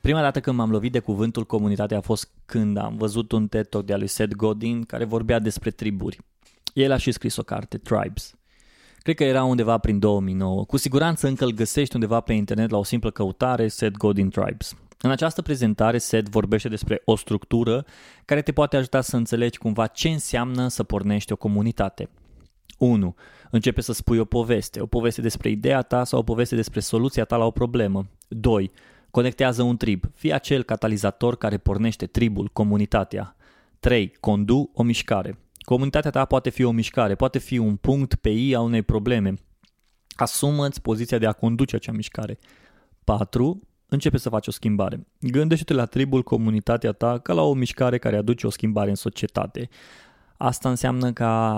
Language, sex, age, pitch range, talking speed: Romanian, male, 20-39, 105-125 Hz, 180 wpm